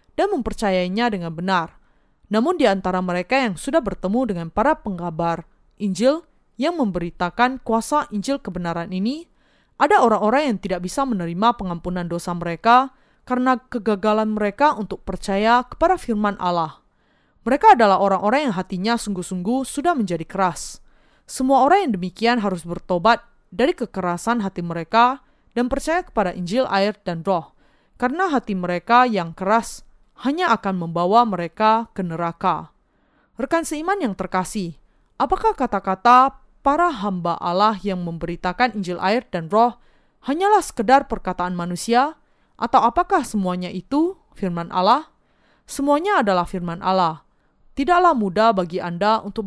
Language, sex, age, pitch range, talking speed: Indonesian, female, 20-39, 180-255 Hz, 130 wpm